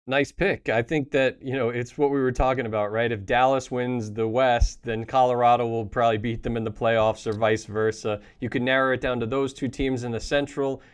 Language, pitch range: English, 115-130 Hz